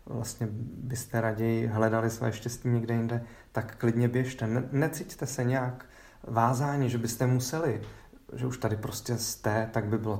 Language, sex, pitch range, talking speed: Czech, male, 110-125 Hz, 160 wpm